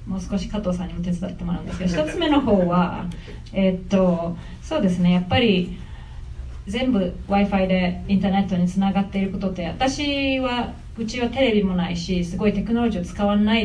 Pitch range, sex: 180-235 Hz, female